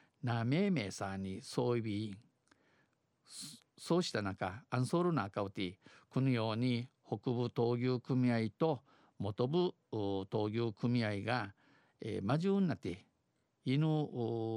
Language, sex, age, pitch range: Japanese, male, 50-69, 115-140 Hz